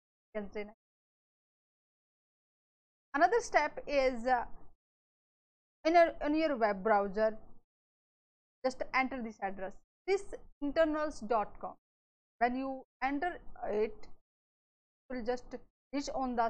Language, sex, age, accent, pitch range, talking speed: English, female, 20-39, Indian, 225-280 Hz, 90 wpm